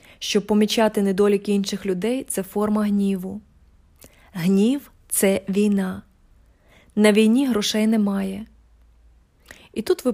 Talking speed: 120 wpm